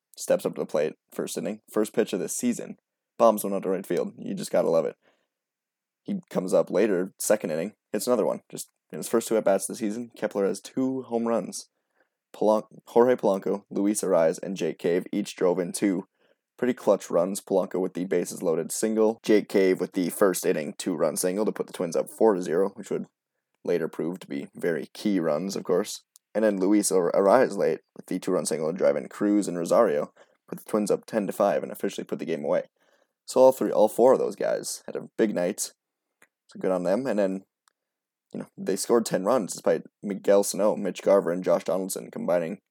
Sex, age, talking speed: male, 20-39, 220 wpm